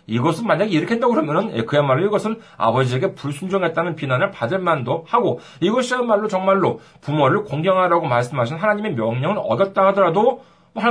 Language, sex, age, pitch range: Korean, male, 40-59, 140-205 Hz